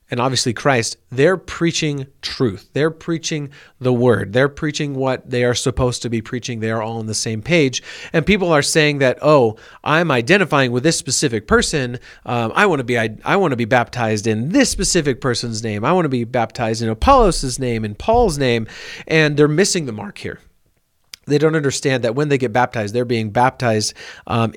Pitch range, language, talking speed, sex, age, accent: 115-150 Hz, English, 205 wpm, male, 40-59, American